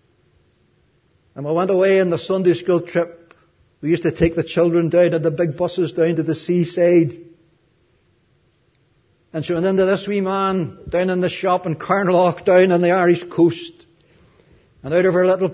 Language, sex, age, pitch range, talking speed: English, male, 60-79, 145-185 Hz, 180 wpm